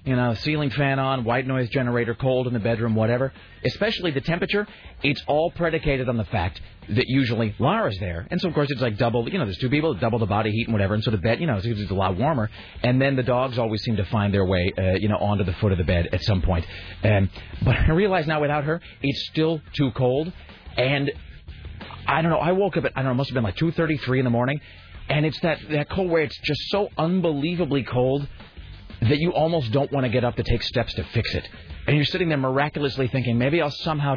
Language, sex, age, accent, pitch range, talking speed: English, male, 30-49, American, 105-145 Hz, 245 wpm